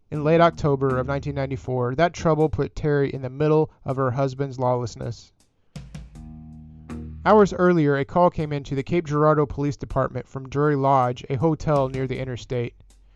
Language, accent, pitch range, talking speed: English, American, 130-155 Hz, 160 wpm